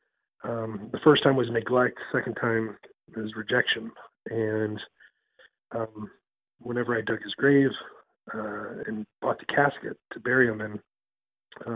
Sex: male